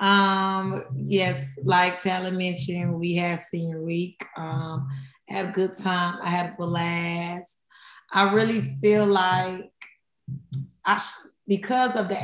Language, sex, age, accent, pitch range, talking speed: English, female, 20-39, American, 170-195 Hz, 135 wpm